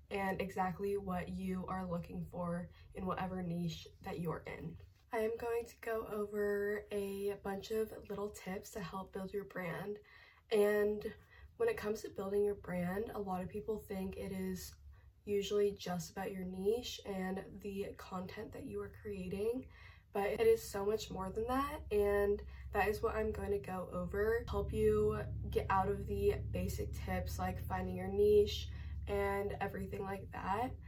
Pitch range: 180-205 Hz